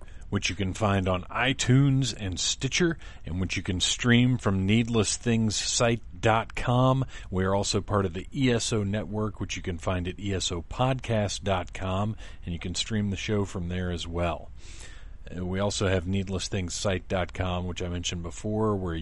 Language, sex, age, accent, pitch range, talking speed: English, male, 40-59, American, 90-110 Hz, 150 wpm